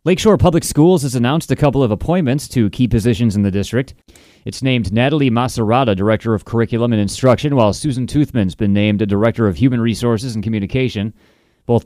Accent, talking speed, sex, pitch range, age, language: American, 185 wpm, male, 105-125 Hz, 30-49, English